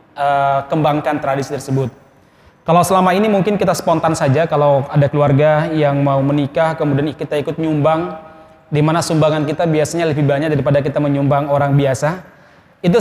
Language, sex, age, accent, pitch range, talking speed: Indonesian, male, 20-39, native, 145-175 Hz, 150 wpm